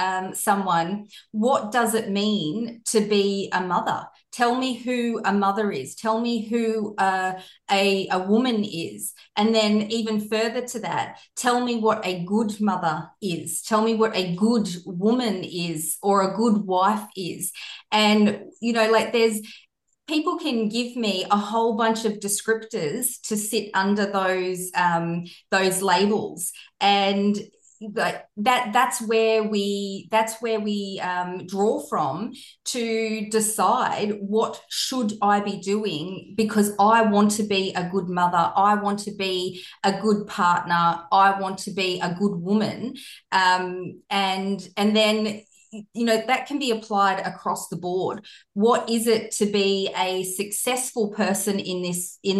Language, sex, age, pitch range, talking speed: English, female, 30-49, 190-225 Hz, 155 wpm